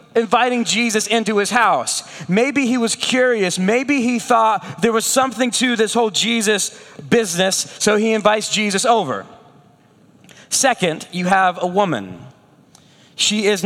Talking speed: 140 wpm